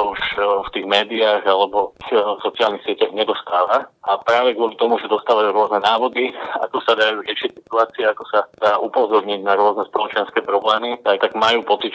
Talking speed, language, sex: 160 wpm, Slovak, male